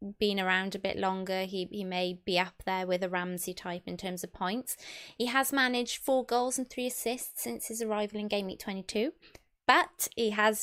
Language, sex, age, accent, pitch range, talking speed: English, female, 20-39, British, 190-240 Hz, 210 wpm